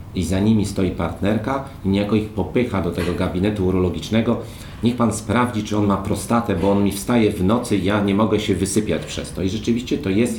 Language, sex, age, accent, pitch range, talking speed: Polish, male, 40-59, native, 95-110 Hz, 215 wpm